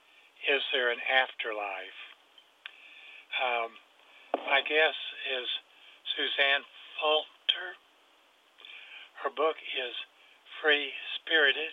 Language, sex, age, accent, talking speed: English, male, 50-69, American, 70 wpm